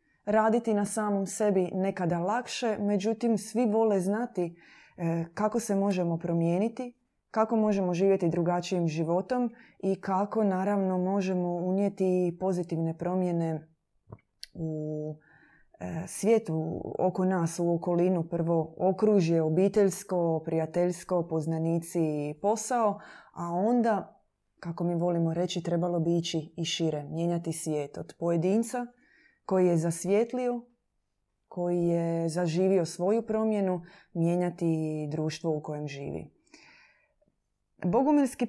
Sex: female